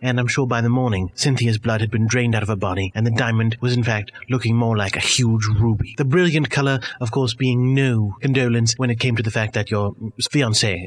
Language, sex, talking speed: English, male, 245 wpm